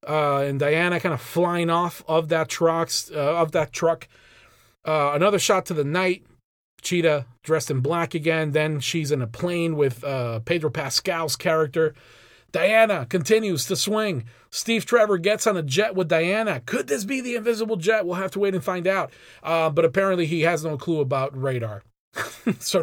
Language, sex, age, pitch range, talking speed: English, male, 40-59, 135-185 Hz, 185 wpm